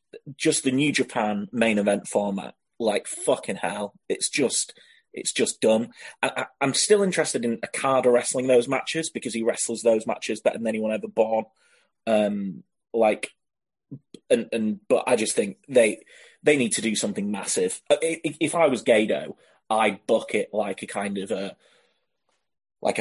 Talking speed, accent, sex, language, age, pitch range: 165 wpm, British, male, English, 30-49, 105-135 Hz